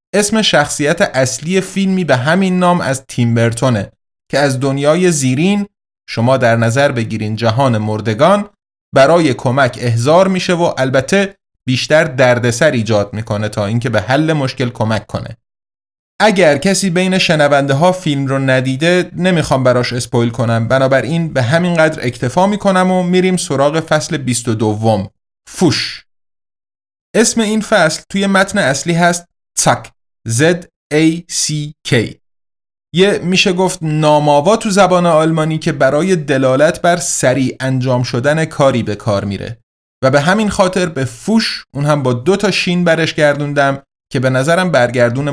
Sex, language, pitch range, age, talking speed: male, Persian, 125-175 Hz, 30-49, 140 wpm